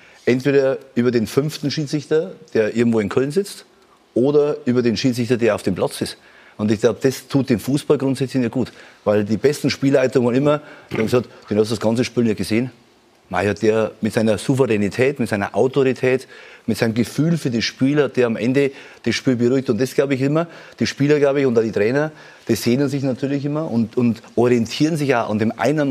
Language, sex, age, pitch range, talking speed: German, male, 30-49, 115-140 Hz, 210 wpm